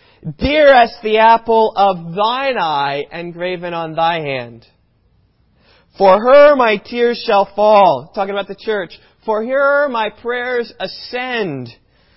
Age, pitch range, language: 40-59, 185-260 Hz, English